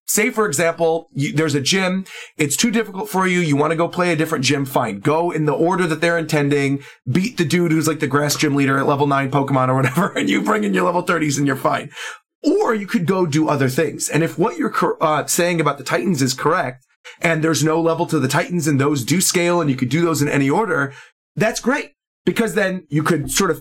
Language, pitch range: English, 145-180 Hz